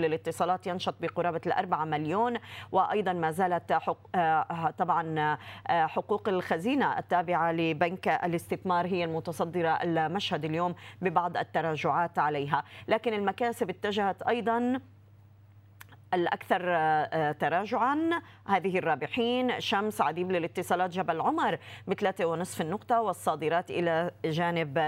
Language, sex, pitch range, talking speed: Arabic, female, 160-190 Hz, 100 wpm